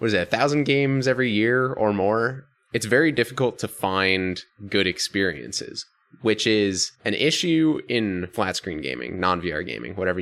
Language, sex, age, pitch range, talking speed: English, male, 20-39, 90-110 Hz, 165 wpm